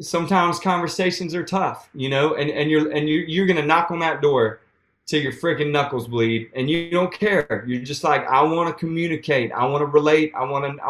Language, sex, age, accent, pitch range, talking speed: English, male, 30-49, American, 125-170 Hz, 230 wpm